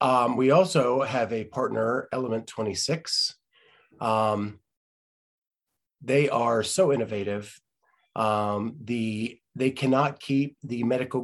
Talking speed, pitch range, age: 100 wpm, 115-140 Hz, 30-49